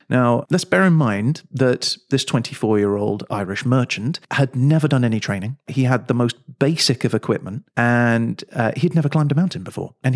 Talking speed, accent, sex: 185 wpm, British, male